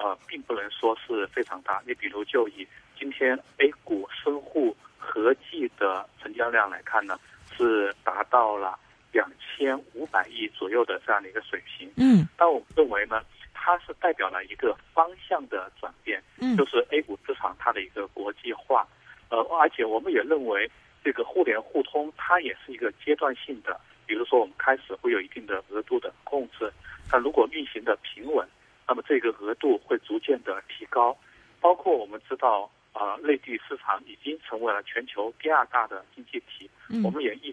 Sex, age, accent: male, 50-69, native